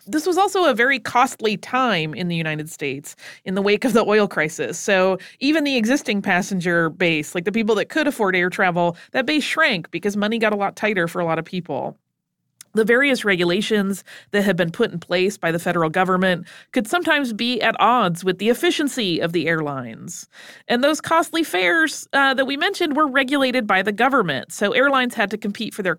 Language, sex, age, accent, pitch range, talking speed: English, female, 30-49, American, 180-240 Hz, 210 wpm